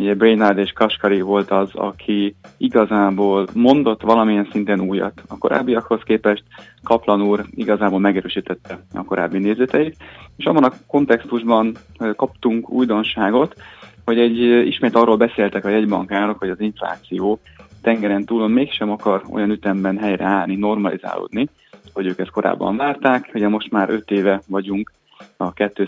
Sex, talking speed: male, 130 wpm